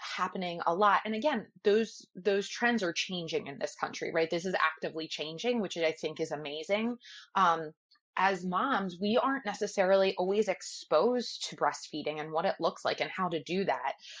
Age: 20-39